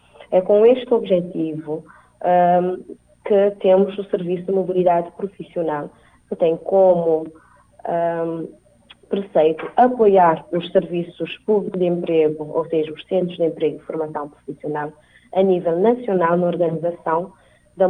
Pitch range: 160-190 Hz